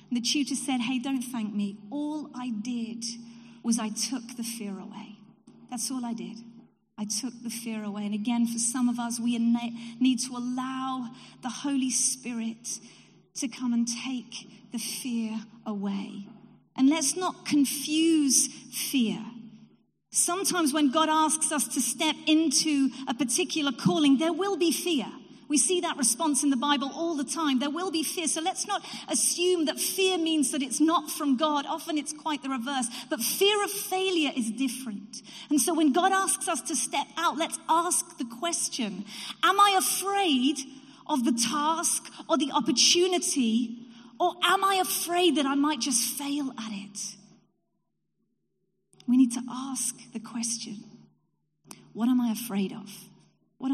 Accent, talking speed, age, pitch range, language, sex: British, 165 wpm, 40-59, 235-310 Hz, English, female